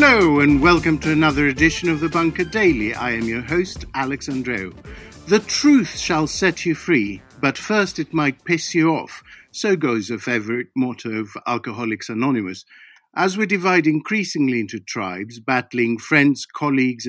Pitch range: 120-165 Hz